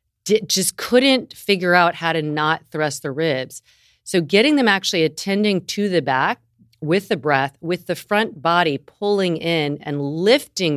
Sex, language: female, English